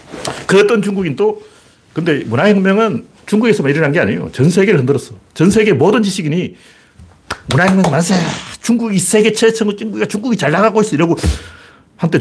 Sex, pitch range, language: male, 120-190 Hz, Korean